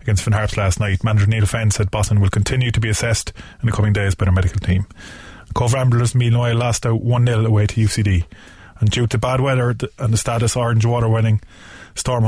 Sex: male